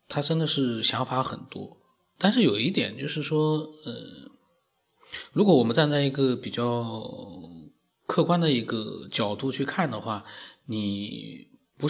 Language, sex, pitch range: Chinese, male, 120-175 Hz